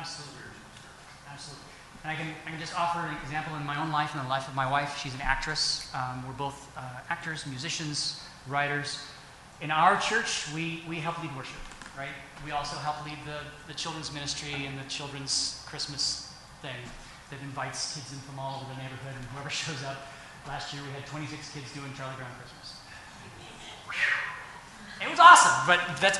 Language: English